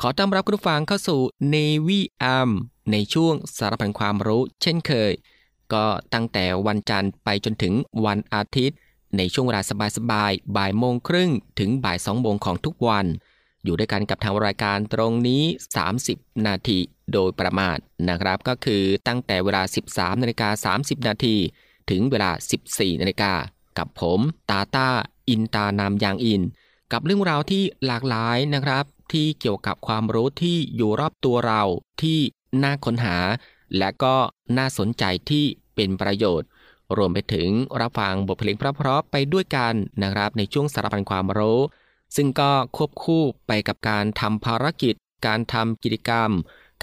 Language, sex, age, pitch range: Thai, male, 20-39, 100-135 Hz